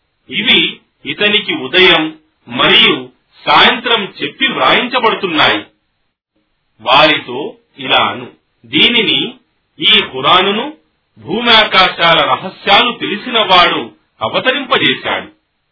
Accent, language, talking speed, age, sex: native, Telugu, 55 wpm, 40-59, male